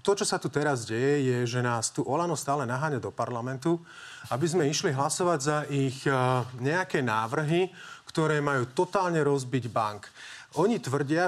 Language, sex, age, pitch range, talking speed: Slovak, male, 30-49, 135-170 Hz, 165 wpm